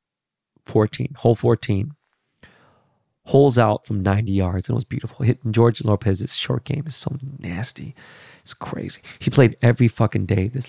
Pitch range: 100-120 Hz